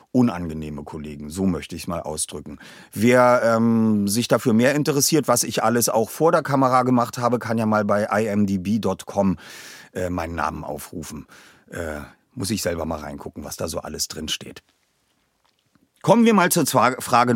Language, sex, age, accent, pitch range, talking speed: German, male, 40-59, German, 95-135 Hz, 175 wpm